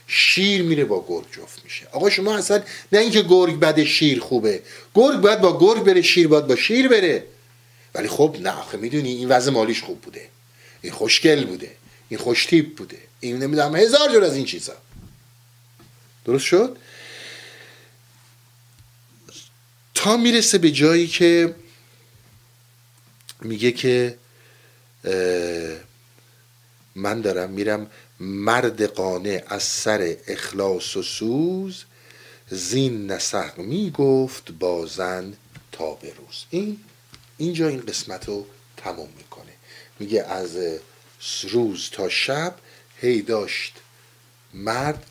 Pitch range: 115-170 Hz